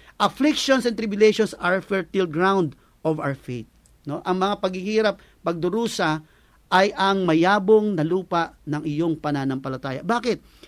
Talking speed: 130 wpm